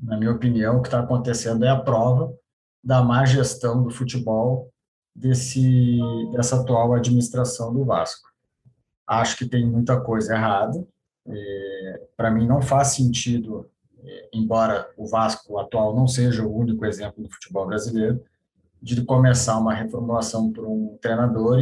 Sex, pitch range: male, 115-135 Hz